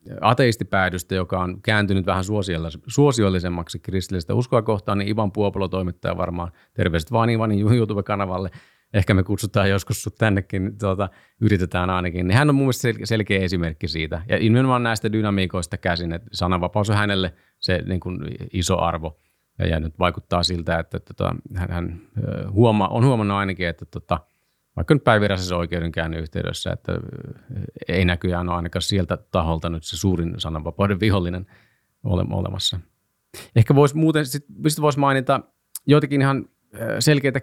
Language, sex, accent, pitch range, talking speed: Finnish, male, native, 90-115 Hz, 130 wpm